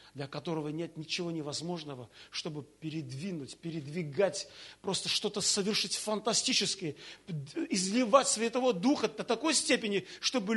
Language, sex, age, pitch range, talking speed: Russian, male, 40-59, 175-250 Hz, 110 wpm